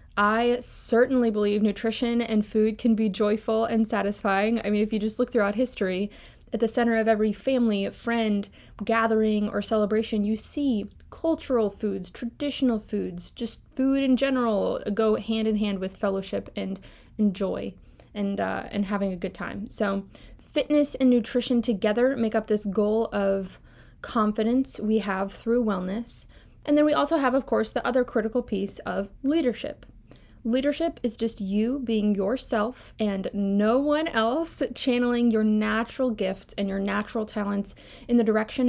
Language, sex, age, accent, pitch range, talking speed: English, female, 20-39, American, 205-245 Hz, 160 wpm